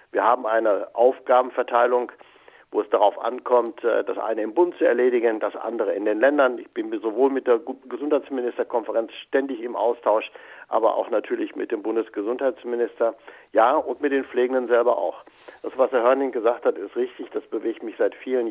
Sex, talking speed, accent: male, 175 wpm, German